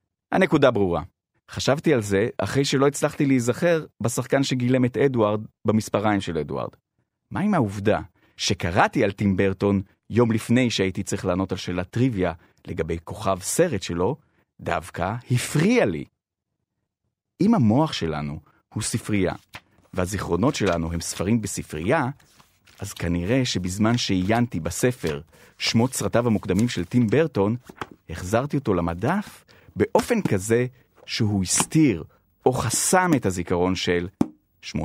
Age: 30-49